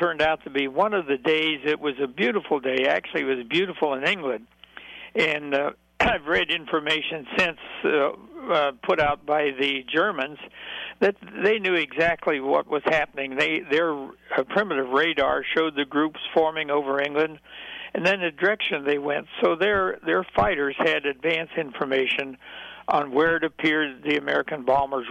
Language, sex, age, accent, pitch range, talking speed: English, male, 60-79, American, 140-160 Hz, 165 wpm